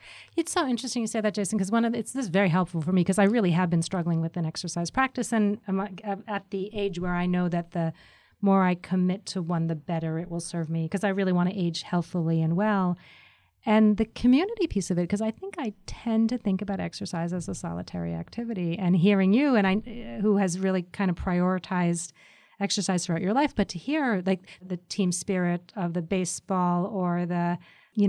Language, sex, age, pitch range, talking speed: English, female, 30-49, 175-205 Hz, 225 wpm